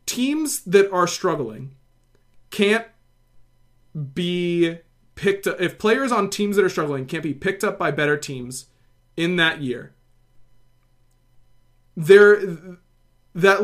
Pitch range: 140-200 Hz